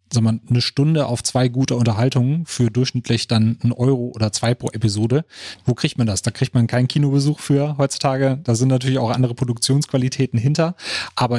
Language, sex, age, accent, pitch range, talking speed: German, male, 30-49, German, 110-130 Hz, 190 wpm